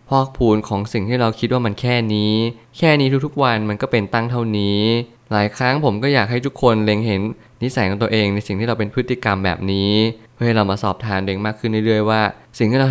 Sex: male